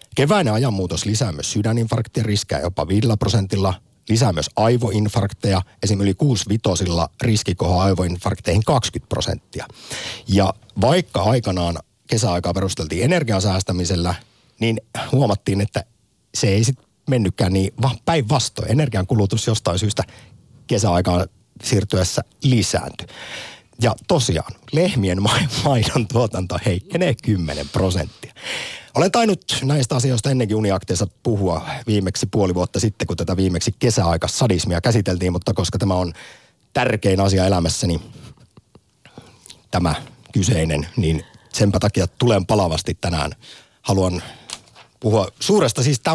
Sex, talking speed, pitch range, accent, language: male, 110 wpm, 95-120 Hz, native, Finnish